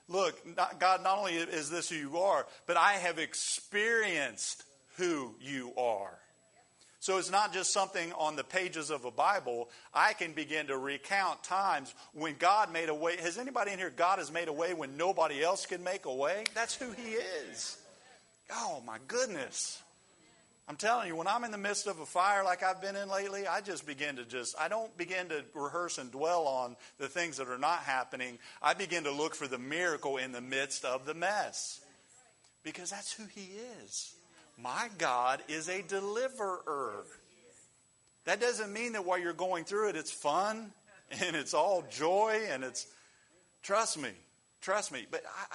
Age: 40-59